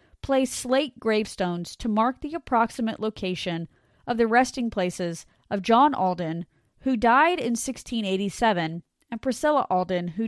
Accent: American